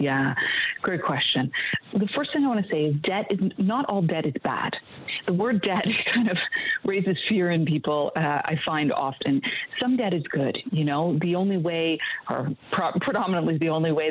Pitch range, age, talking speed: 150-195 Hz, 40-59, 195 wpm